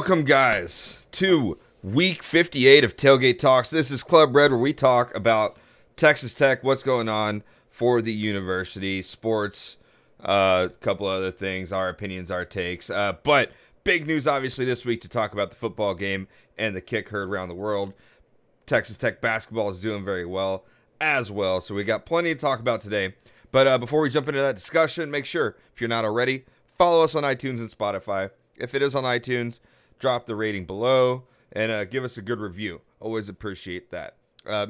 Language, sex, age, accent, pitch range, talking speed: English, male, 30-49, American, 100-130 Hz, 195 wpm